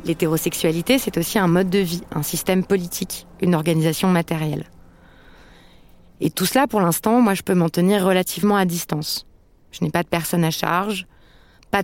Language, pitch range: French, 175-205 Hz